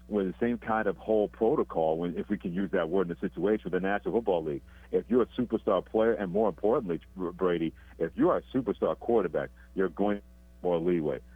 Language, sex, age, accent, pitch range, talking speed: English, male, 50-69, American, 85-100 Hz, 210 wpm